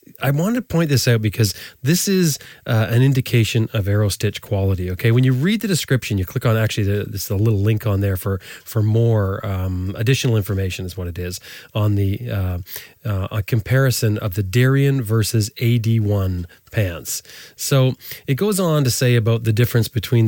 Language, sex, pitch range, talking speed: English, male, 105-140 Hz, 200 wpm